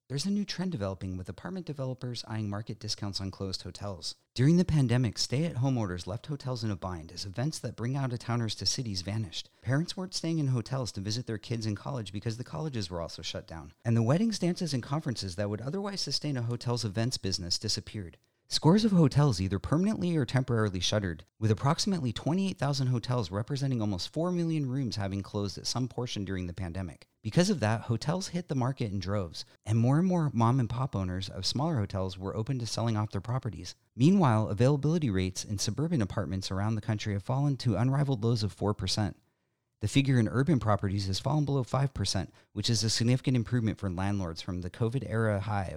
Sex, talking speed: male, 200 wpm